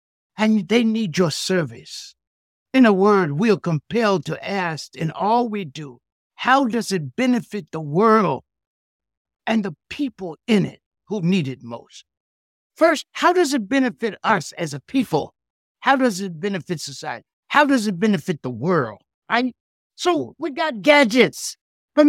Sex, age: male, 60-79